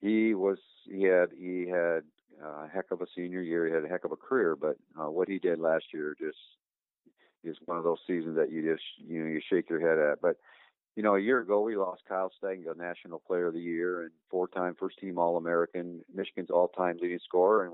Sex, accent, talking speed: male, American, 225 wpm